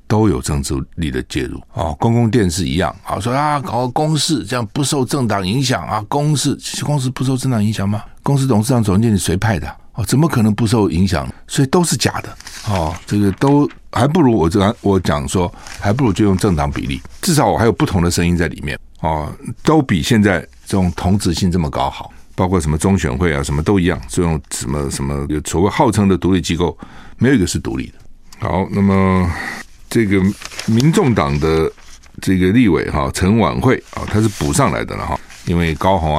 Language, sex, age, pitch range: Chinese, male, 60-79, 80-110 Hz